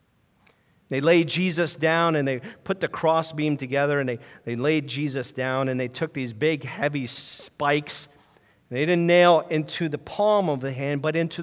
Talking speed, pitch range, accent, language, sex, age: 180 wpm, 145-185 Hz, American, English, male, 40-59